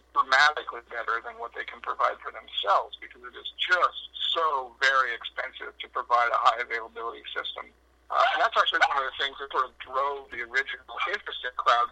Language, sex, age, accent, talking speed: English, male, 60-79, American, 190 wpm